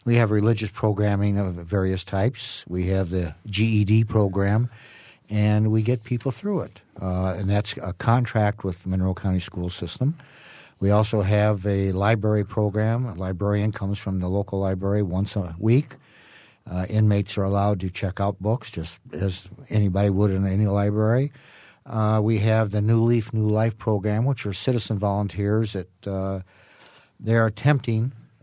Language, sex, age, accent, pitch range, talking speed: English, male, 60-79, American, 95-115 Hz, 165 wpm